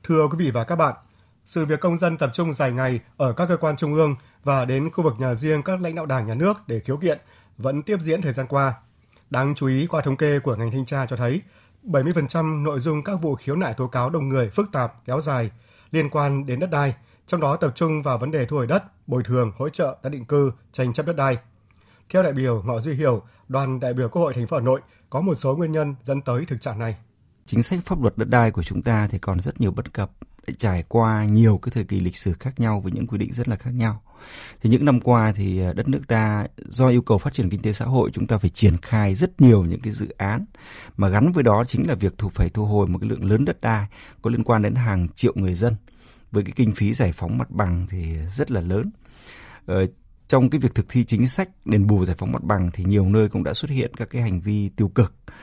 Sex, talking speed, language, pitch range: male, 265 wpm, Vietnamese, 105-140 Hz